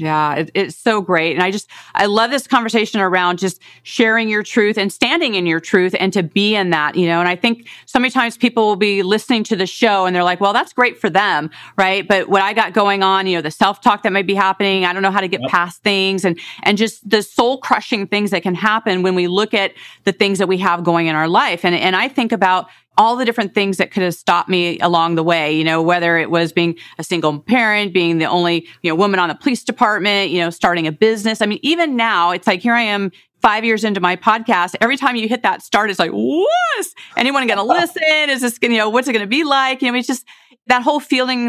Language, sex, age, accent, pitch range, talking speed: English, female, 40-59, American, 180-230 Hz, 260 wpm